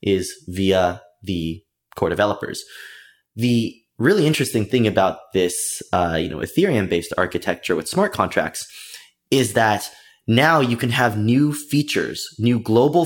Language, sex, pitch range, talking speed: English, male, 95-120 Hz, 135 wpm